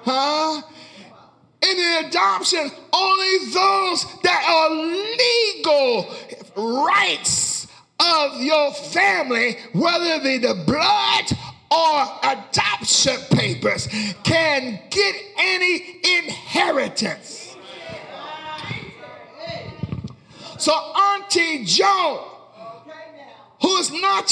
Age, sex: 40-59, male